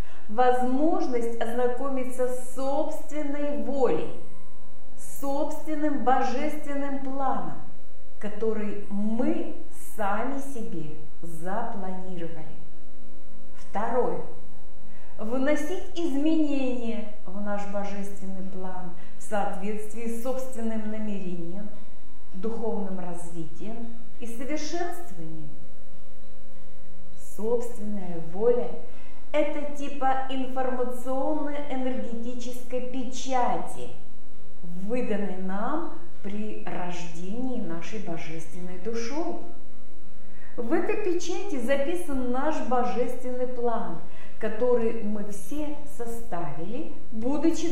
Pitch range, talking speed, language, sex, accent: 195-275 Hz, 70 wpm, Russian, female, native